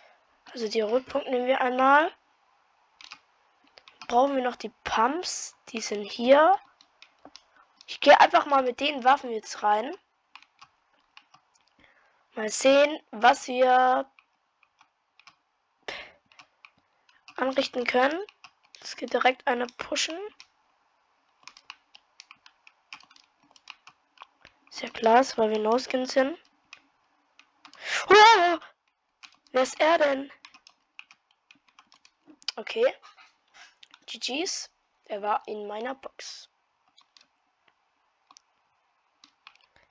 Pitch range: 230-295 Hz